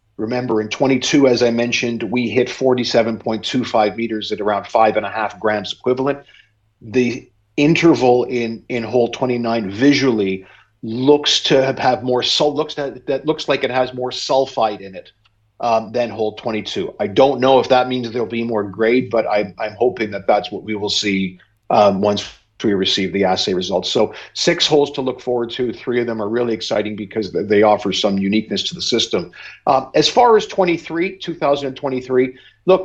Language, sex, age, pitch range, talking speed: English, male, 50-69, 110-135 Hz, 180 wpm